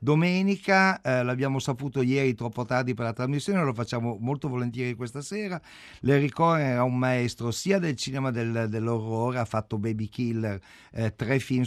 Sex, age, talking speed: male, 50-69, 170 wpm